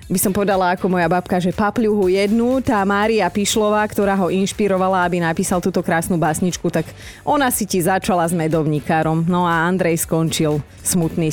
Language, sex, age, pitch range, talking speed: Slovak, female, 30-49, 165-220 Hz, 170 wpm